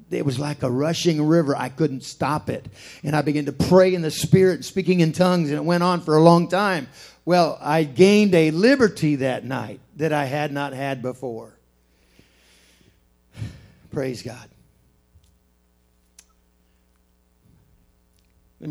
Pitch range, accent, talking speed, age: 105-160 Hz, American, 145 wpm, 50-69